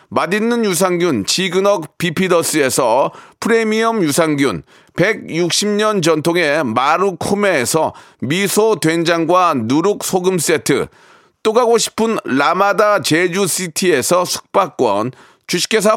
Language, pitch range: Korean, 175-220 Hz